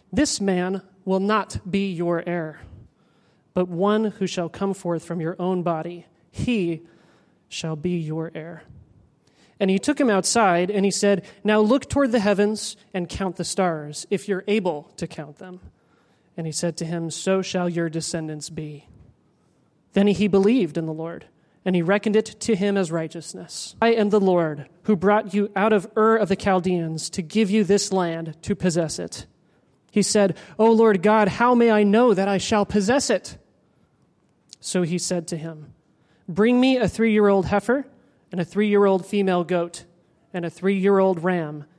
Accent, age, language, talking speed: American, 30-49, English, 175 wpm